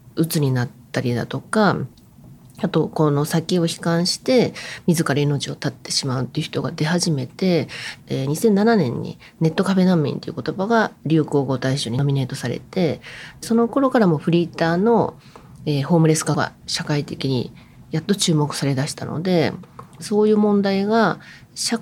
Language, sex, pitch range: Japanese, female, 145-205 Hz